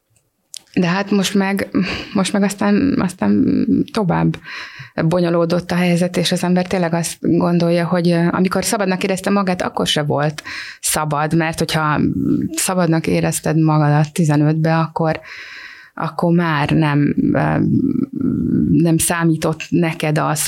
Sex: female